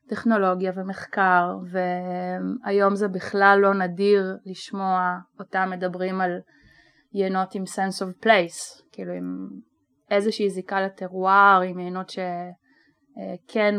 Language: Hebrew